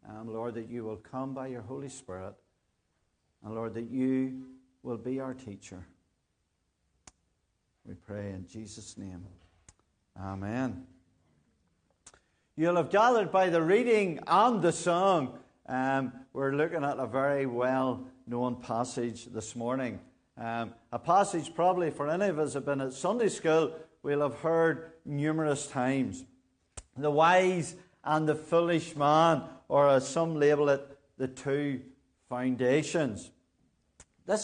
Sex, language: male, English